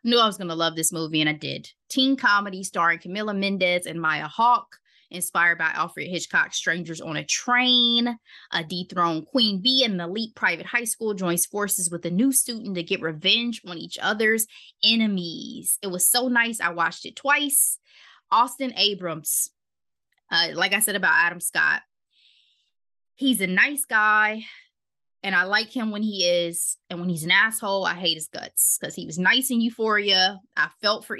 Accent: American